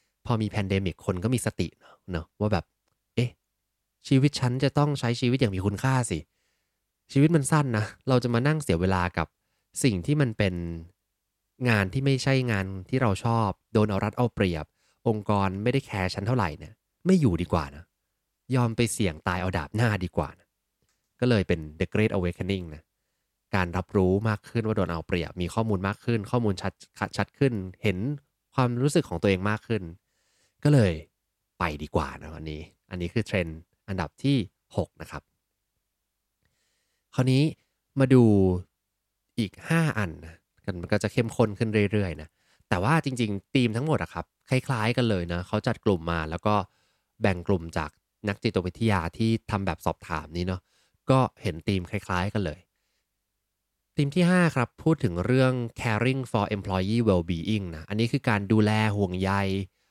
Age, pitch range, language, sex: 20-39, 90-120 Hz, English, male